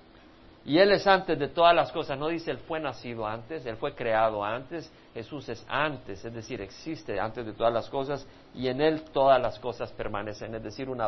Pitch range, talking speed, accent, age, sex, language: 135-210 Hz, 210 wpm, Mexican, 50-69, male, Spanish